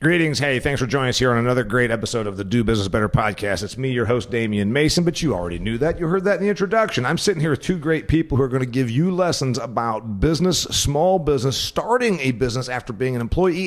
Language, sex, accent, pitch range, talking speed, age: English, male, American, 105-135 Hz, 260 wpm, 40-59